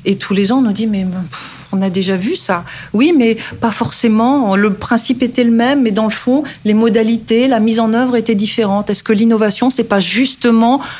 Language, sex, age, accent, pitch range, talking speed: French, female, 40-59, French, 200-240 Hz, 225 wpm